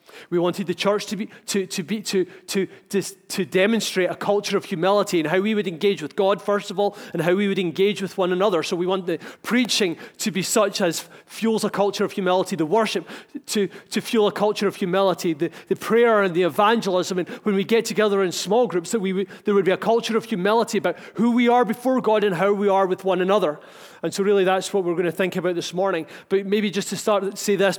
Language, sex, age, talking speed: English, male, 30-49, 250 wpm